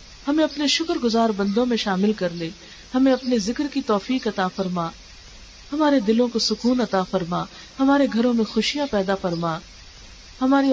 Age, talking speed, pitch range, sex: 40-59, 160 wpm, 195-230 Hz, female